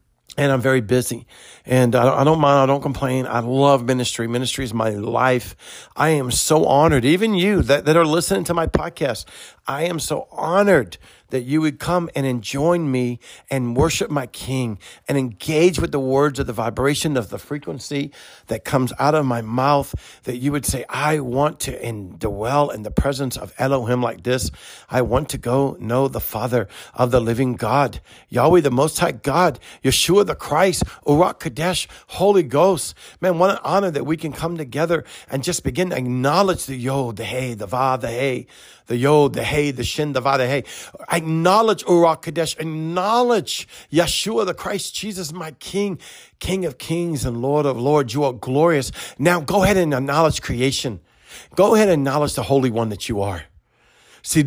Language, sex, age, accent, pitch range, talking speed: English, male, 50-69, American, 125-155 Hz, 190 wpm